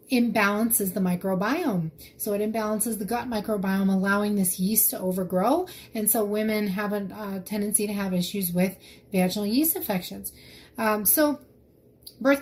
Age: 30-49